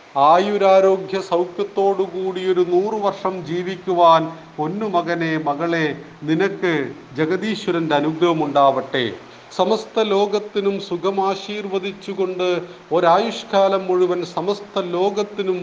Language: Malayalam